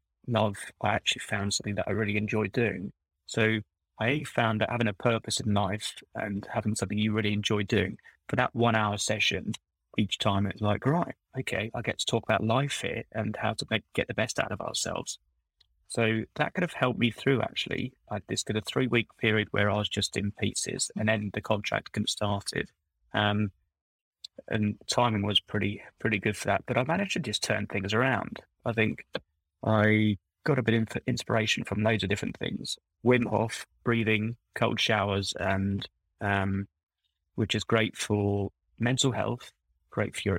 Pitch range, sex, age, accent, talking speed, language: 100-110 Hz, male, 20-39, British, 190 wpm, English